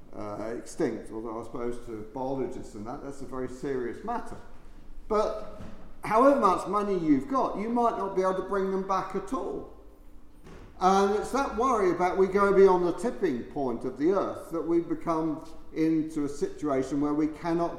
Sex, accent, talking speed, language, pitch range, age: male, British, 180 wpm, English, 140-195 Hz, 50-69